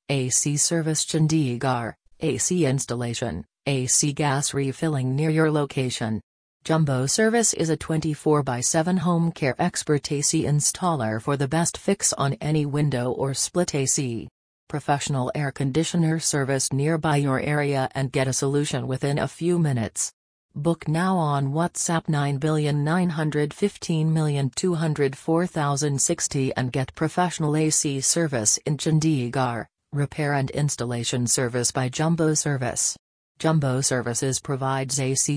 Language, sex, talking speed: English, female, 115 wpm